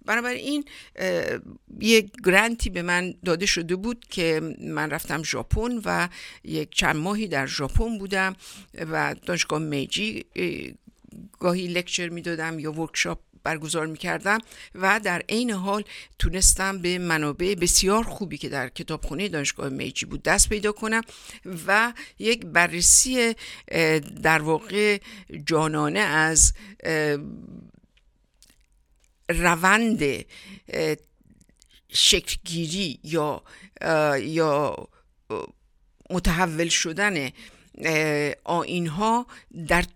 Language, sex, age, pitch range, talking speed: Persian, female, 60-79, 155-205 Hz, 100 wpm